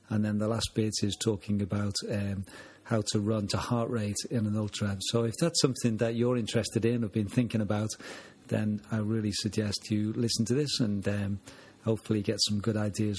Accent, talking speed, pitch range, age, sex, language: British, 205 wpm, 105-120 Hz, 40-59, male, English